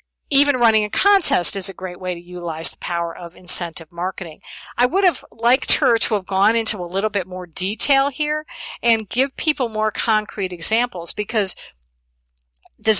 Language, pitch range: English, 180-235 Hz